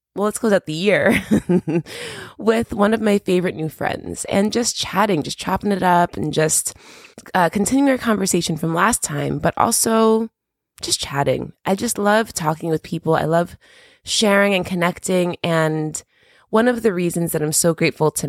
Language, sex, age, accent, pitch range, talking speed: English, female, 20-39, American, 150-200 Hz, 175 wpm